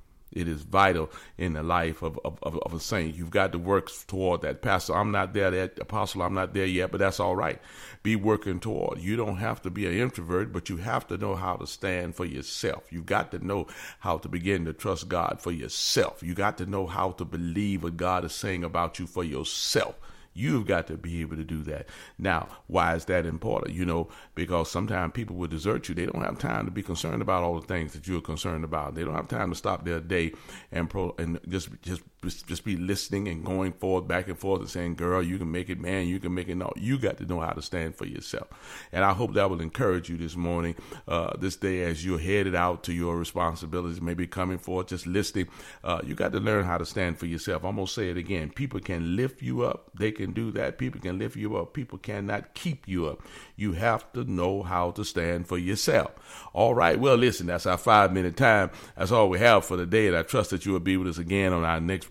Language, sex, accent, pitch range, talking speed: English, male, American, 85-100 Hz, 245 wpm